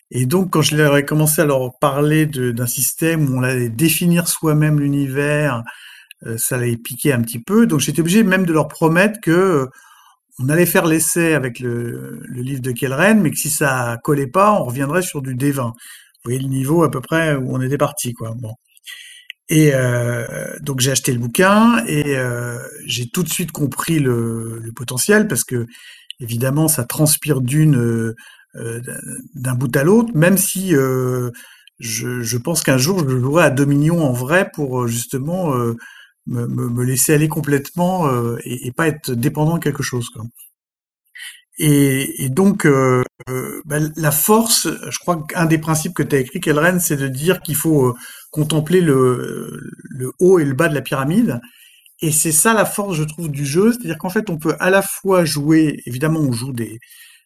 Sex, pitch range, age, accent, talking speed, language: male, 125-170 Hz, 50-69, French, 195 wpm, French